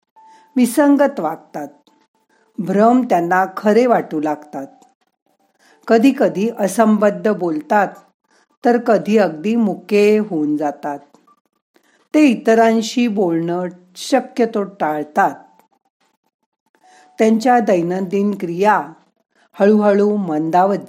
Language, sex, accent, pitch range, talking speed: Marathi, female, native, 175-235 Hz, 80 wpm